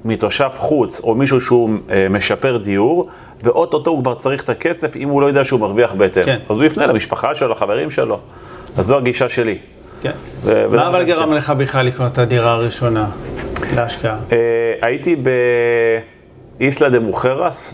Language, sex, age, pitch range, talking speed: Hebrew, male, 30-49, 110-140 Hz, 155 wpm